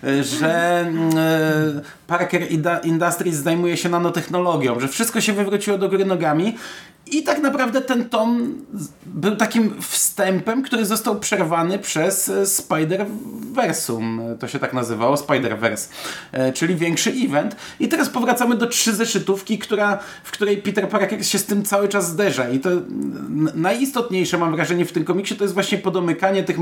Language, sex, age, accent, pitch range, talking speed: Polish, male, 30-49, native, 130-195 Hz, 145 wpm